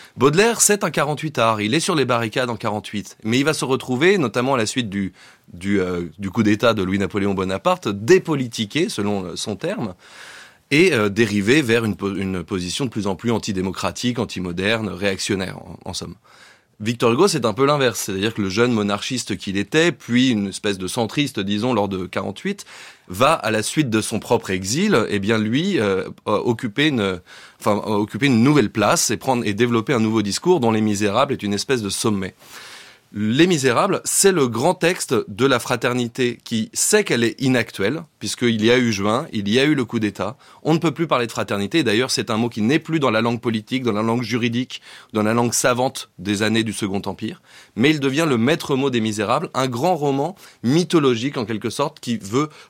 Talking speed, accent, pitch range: 205 wpm, French, 105-135 Hz